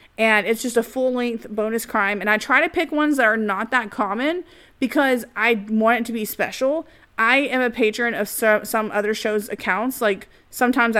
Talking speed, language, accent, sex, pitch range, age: 195 wpm, English, American, female, 205-250 Hz, 30-49